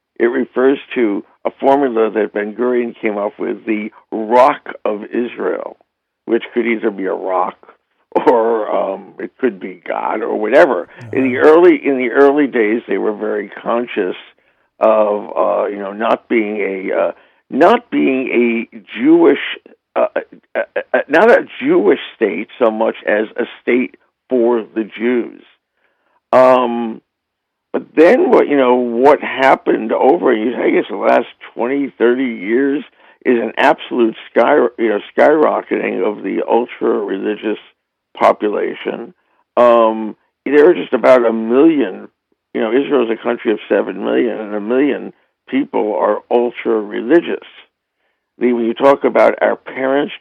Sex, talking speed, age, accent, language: male, 145 wpm, 60-79, American, English